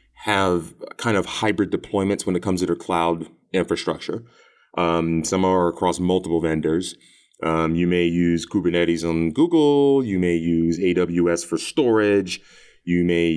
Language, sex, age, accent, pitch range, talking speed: English, male, 30-49, American, 80-95 Hz, 150 wpm